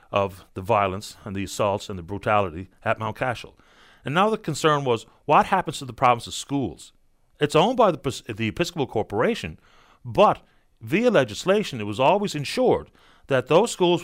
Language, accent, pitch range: English, American, 105-150 Hz